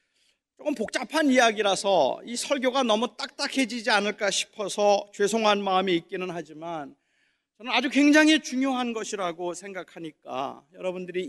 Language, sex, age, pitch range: Korean, male, 40-59, 240-295 Hz